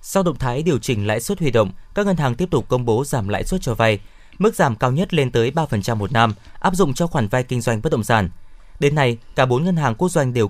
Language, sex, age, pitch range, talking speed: Vietnamese, male, 20-39, 110-150 Hz, 280 wpm